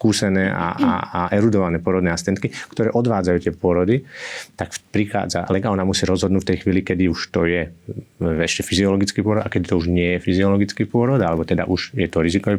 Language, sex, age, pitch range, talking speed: Slovak, male, 30-49, 85-100 Hz, 185 wpm